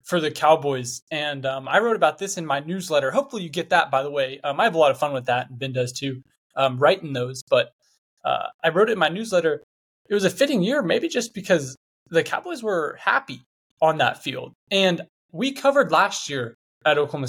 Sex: male